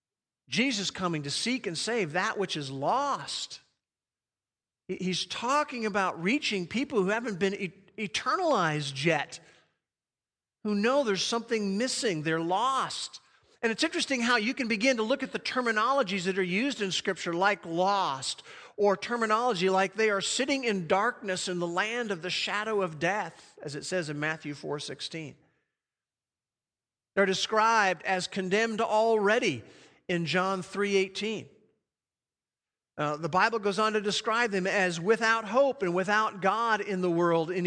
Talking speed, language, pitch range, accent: 150 wpm, English, 180-225 Hz, American